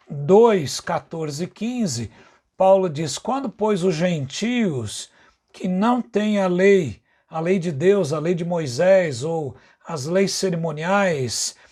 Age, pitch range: 60-79, 175-220 Hz